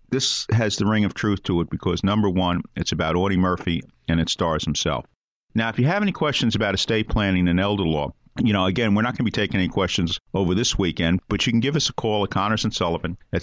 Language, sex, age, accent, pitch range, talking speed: English, male, 50-69, American, 90-110 Hz, 250 wpm